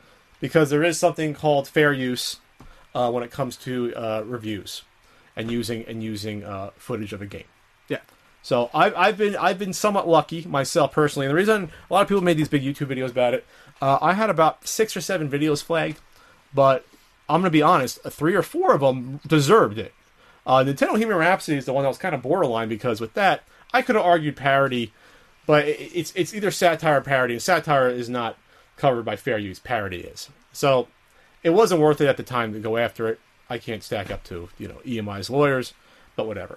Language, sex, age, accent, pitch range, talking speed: English, male, 30-49, American, 120-175 Hz, 210 wpm